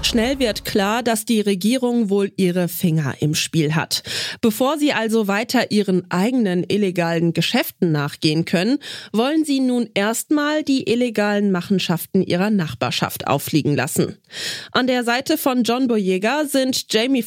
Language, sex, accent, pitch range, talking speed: German, female, German, 175-245 Hz, 145 wpm